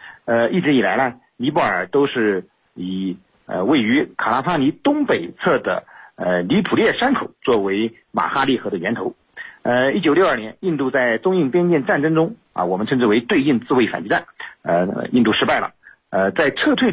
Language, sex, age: Chinese, male, 50-69